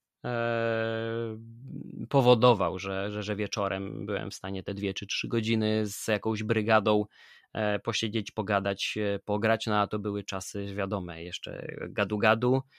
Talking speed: 125 wpm